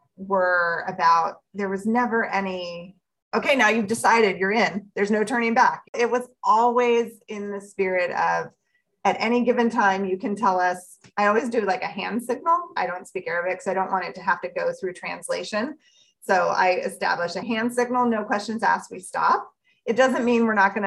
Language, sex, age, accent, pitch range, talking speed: English, female, 30-49, American, 185-235 Hz, 200 wpm